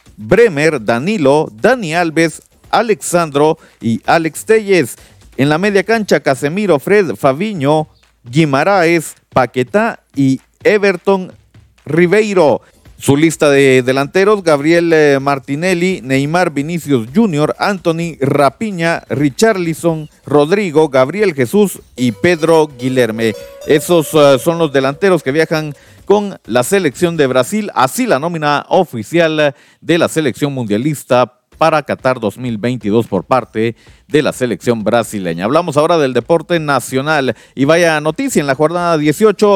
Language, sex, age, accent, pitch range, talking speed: Spanish, male, 40-59, Mexican, 135-180 Hz, 120 wpm